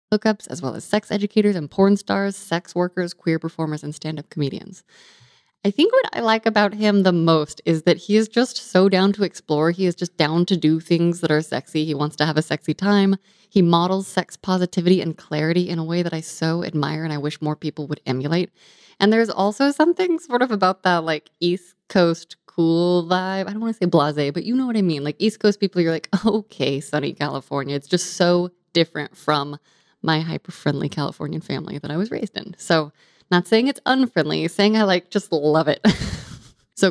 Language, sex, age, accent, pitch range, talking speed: English, female, 20-39, American, 160-210 Hz, 215 wpm